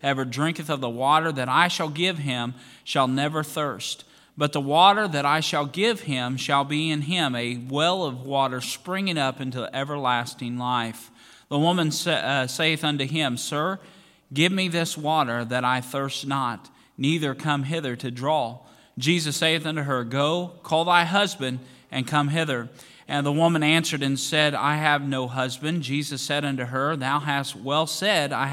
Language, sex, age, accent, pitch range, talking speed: English, male, 40-59, American, 135-160 Hz, 180 wpm